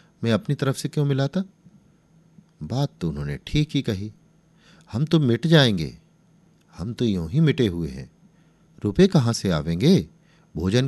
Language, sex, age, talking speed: Hindi, male, 50-69, 155 wpm